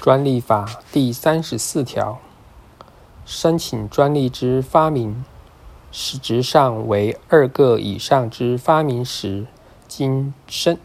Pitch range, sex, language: 110-150 Hz, male, Chinese